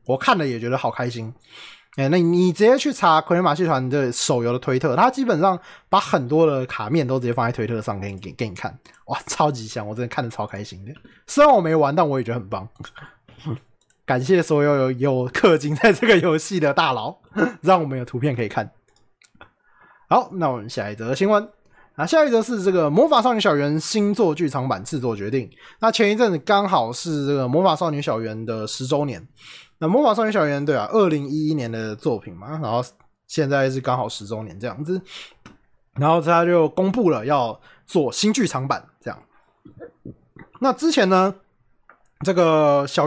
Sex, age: male, 20-39